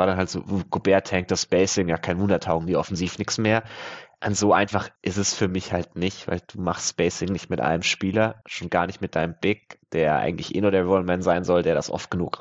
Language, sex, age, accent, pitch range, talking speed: German, male, 20-39, German, 95-110 Hz, 245 wpm